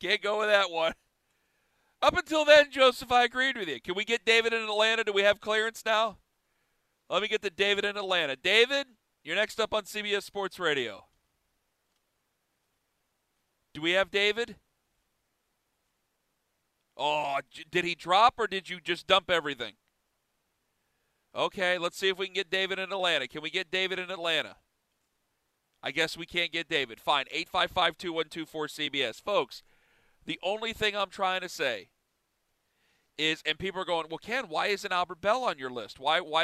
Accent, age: American, 40-59